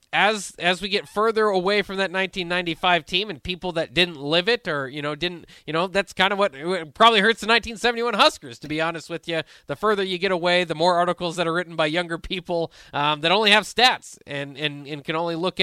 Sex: male